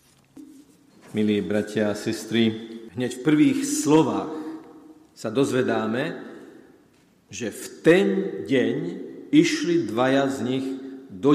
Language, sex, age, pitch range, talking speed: Slovak, male, 50-69, 115-160 Hz, 100 wpm